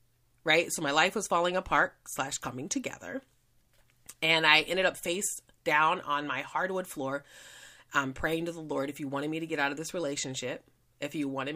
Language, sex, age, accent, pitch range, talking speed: English, female, 30-49, American, 125-160 Hz, 200 wpm